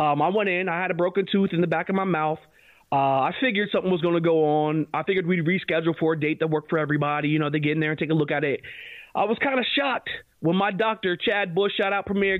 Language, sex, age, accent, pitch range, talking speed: English, male, 30-49, American, 155-205 Hz, 285 wpm